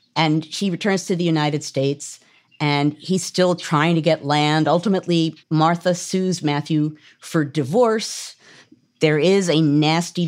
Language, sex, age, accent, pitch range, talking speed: English, female, 50-69, American, 150-195 Hz, 140 wpm